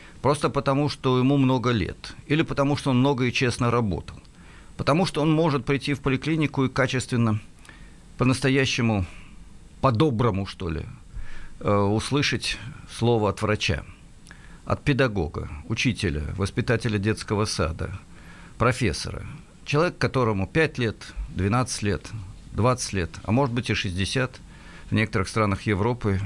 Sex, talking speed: male, 125 wpm